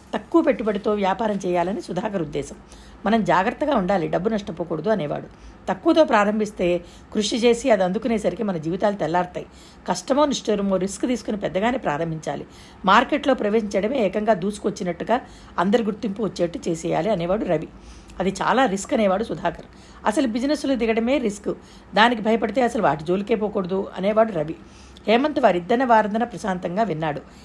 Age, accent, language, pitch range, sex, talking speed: 60-79, native, Telugu, 190-235 Hz, female, 130 wpm